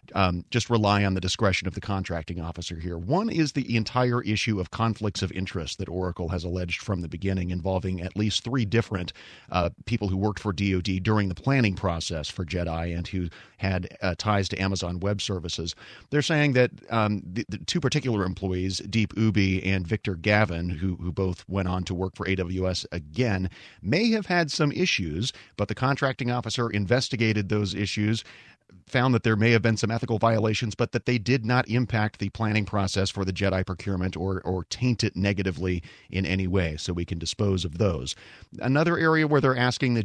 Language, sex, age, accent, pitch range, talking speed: English, male, 30-49, American, 95-115 Hz, 195 wpm